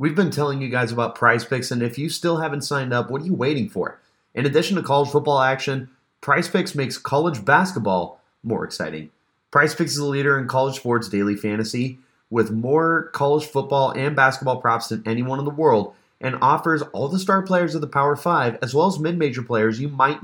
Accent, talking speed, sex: American, 215 wpm, male